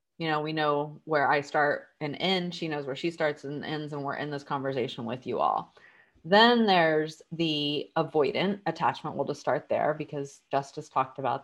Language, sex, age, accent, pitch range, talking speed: English, female, 30-49, American, 145-175 Hz, 195 wpm